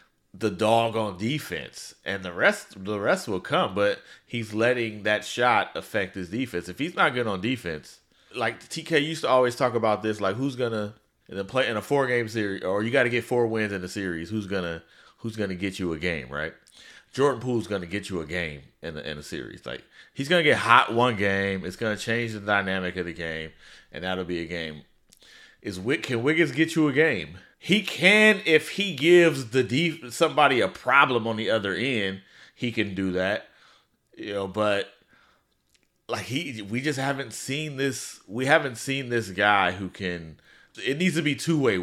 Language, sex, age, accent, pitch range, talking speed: English, male, 30-49, American, 95-135 Hz, 200 wpm